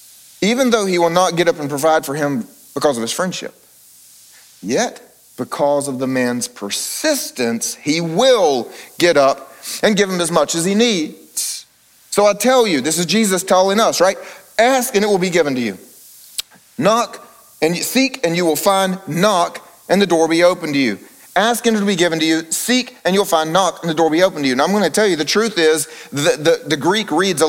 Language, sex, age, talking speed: English, male, 40-59, 225 wpm